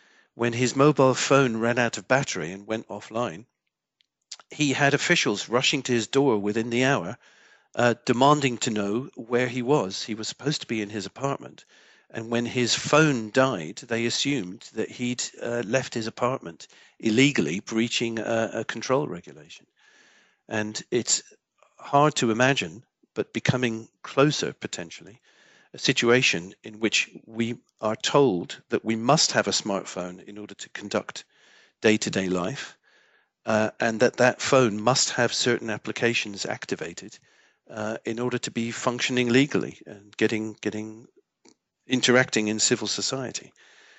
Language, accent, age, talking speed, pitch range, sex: English, British, 50-69, 145 wpm, 110-130 Hz, male